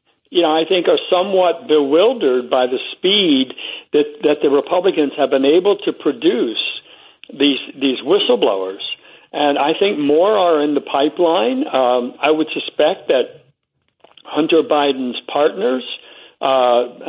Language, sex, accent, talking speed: English, male, American, 135 wpm